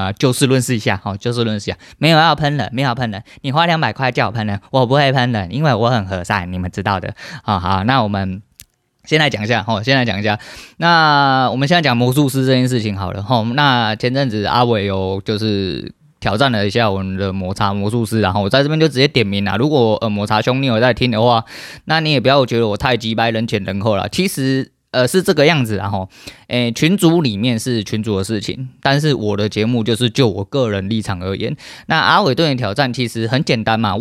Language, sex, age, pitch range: Chinese, male, 20-39, 105-140 Hz